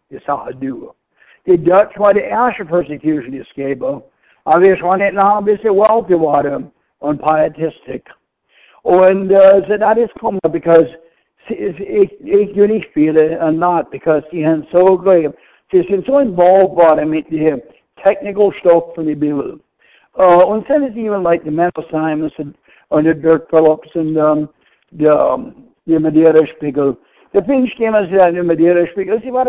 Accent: American